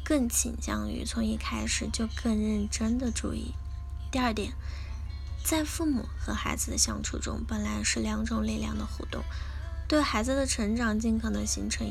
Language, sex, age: Chinese, female, 10-29